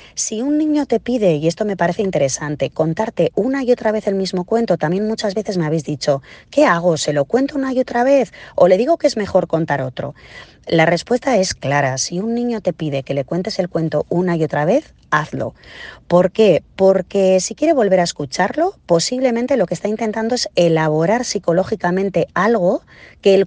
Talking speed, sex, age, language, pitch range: 200 wpm, female, 30-49, Spanish, 155-230 Hz